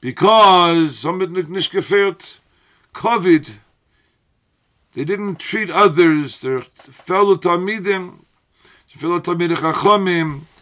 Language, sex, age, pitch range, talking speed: English, male, 50-69, 150-190 Hz, 60 wpm